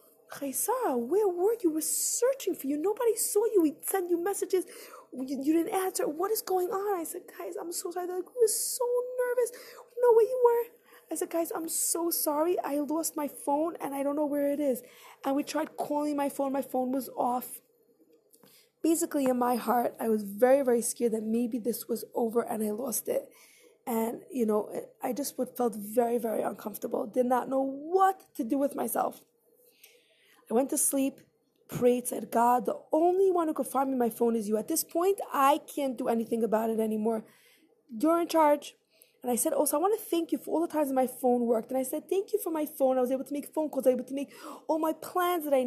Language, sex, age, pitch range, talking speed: English, female, 20-39, 250-375 Hz, 230 wpm